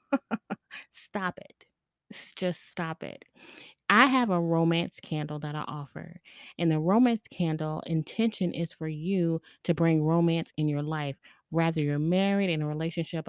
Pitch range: 155-185 Hz